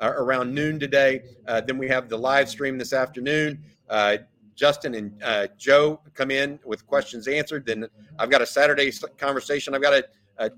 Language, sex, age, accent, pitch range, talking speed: English, male, 50-69, American, 125-150 Hz, 180 wpm